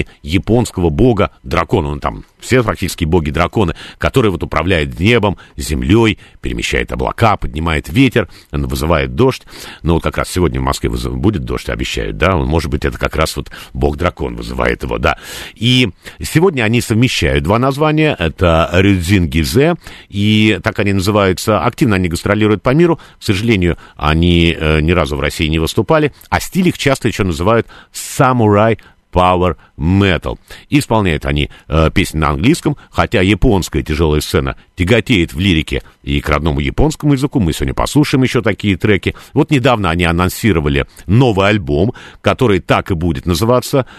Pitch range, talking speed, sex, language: 80-115 Hz, 145 wpm, male, Russian